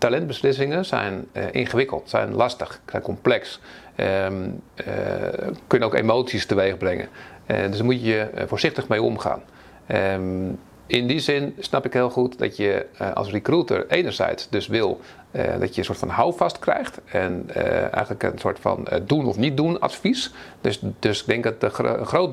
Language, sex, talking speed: Dutch, male, 170 wpm